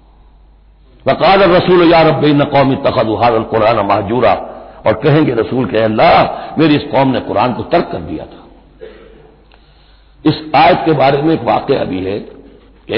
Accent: native